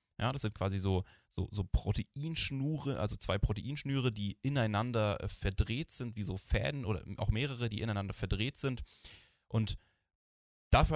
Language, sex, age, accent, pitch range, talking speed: German, male, 10-29, German, 100-120 Hz, 150 wpm